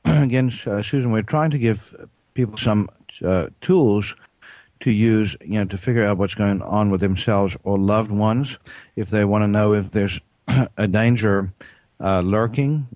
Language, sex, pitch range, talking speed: English, male, 100-110 Hz, 170 wpm